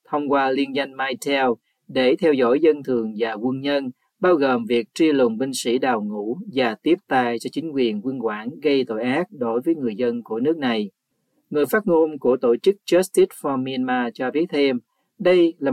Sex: male